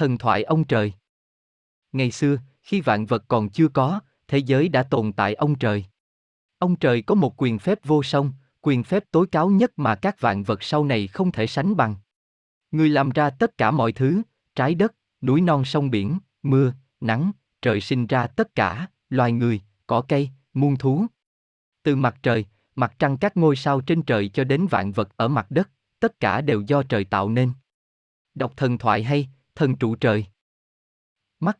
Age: 20-39